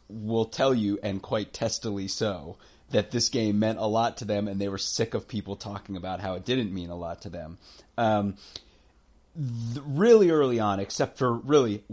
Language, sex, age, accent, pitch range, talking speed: English, male, 30-49, American, 95-120 Hz, 195 wpm